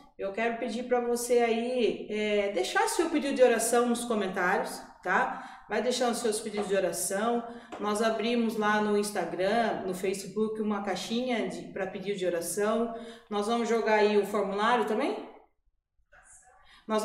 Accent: Brazilian